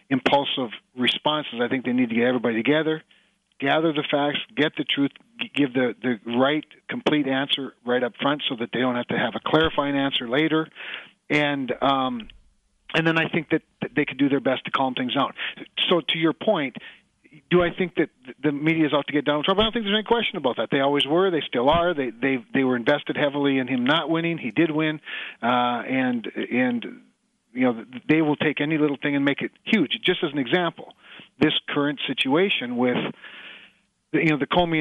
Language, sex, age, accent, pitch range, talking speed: English, male, 40-59, American, 130-170 Hz, 210 wpm